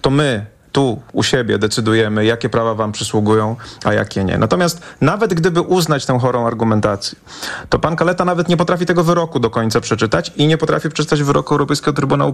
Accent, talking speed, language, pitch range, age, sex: native, 185 wpm, Polish, 115-150 Hz, 30-49, male